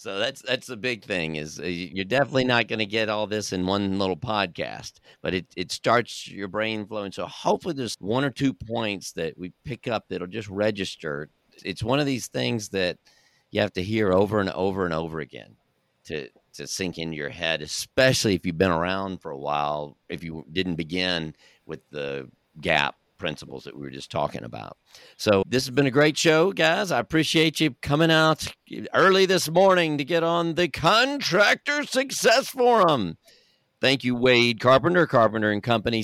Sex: male